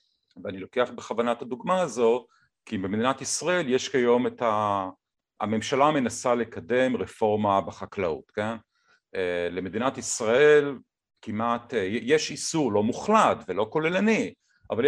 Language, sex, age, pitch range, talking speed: Hebrew, male, 50-69, 100-150 Hz, 115 wpm